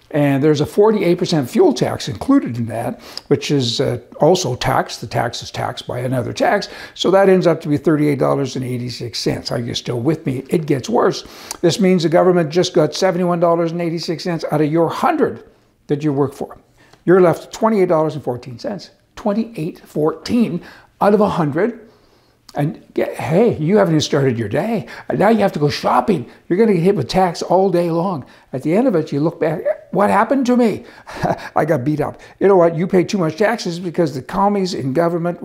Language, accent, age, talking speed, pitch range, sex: English, American, 60-79, 190 wpm, 145-185 Hz, male